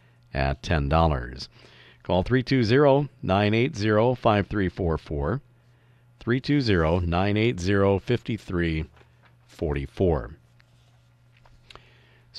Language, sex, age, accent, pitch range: English, male, 50-69, American, 85-120 Hz